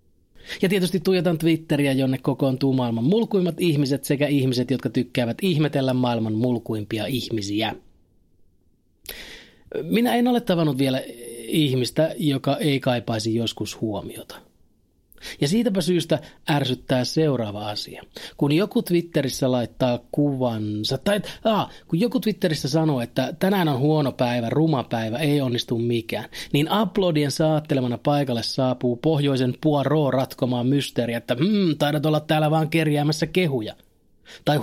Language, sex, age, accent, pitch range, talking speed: Finnish, male, 30-49, native, 125-155 Hz, 125 wpm